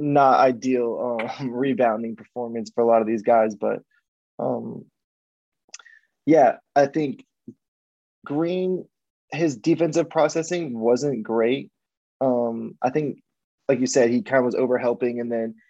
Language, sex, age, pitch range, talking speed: English, male, 20-39, 120-145 Hz, 135 wpm